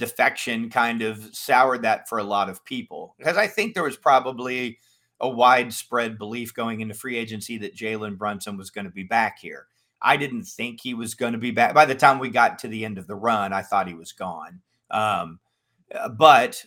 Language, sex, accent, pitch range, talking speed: English, male, American, 110-135 Hz, 210 wpm